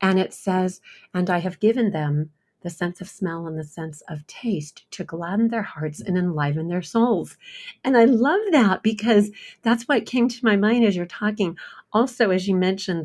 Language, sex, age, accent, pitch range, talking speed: English, female, 40-59, American, 160-210 Hz, 200 wpm